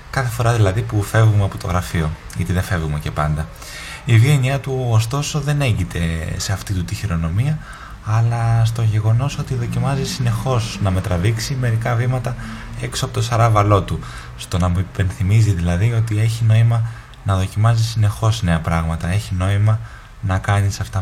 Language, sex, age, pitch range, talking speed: Greek, male, 20-39, 90-115 Hz, 165 wpm